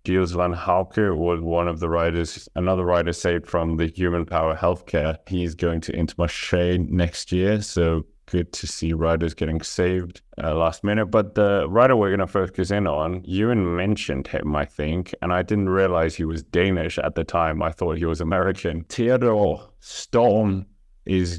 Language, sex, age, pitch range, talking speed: English, male, 30-49, 80-95 Hz, 180 wpm